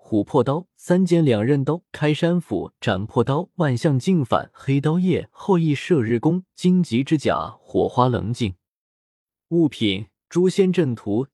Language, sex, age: Chinese, male, 20-39